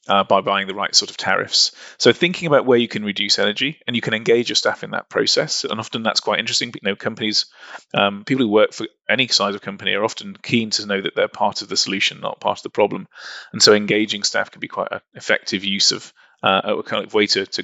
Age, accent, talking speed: 30-49, British, 260 wpm